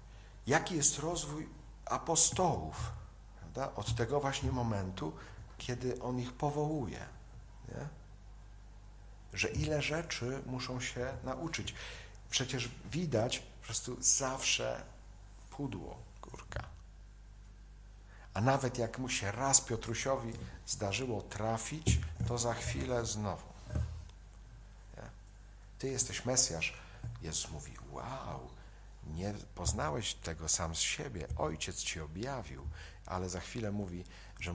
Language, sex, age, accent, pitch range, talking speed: Polish, male, 50-69, native, 95-125 Hz, 105 wpm